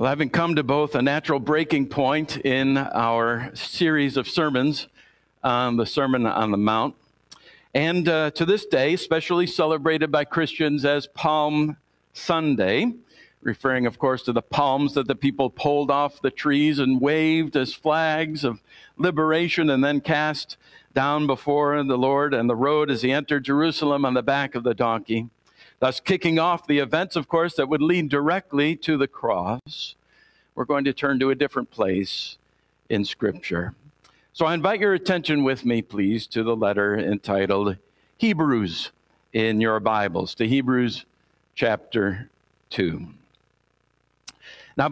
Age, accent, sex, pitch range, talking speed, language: 50-69, American, male, 130-160 Hz, 155 wpm, English